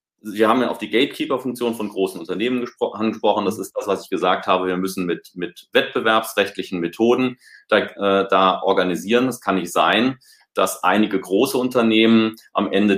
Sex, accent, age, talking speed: male, German, 30-49, 175 wpm